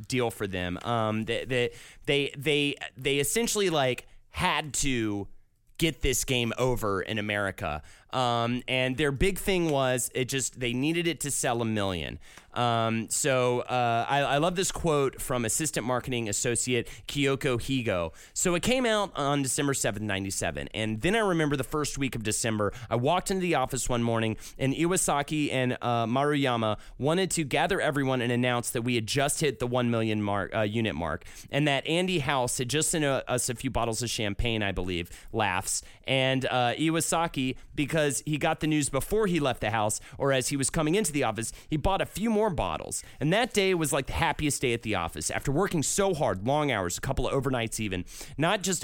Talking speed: 200 wpm